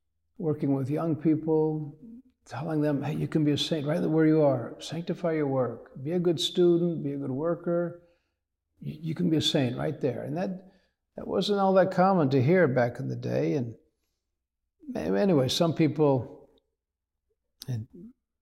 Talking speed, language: 170 wpm, English